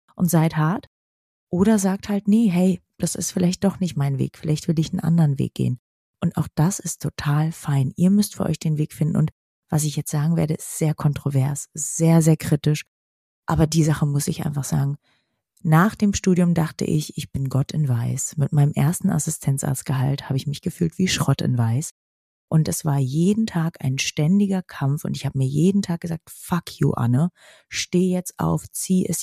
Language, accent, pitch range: German, German, 140-170 Hz